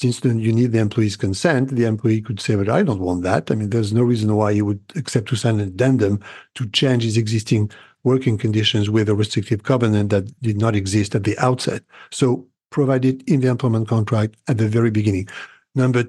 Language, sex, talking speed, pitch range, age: English, male, 215 wpm, 110-135 Hz, 60-79